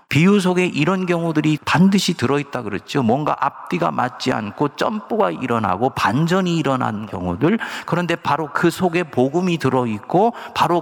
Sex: male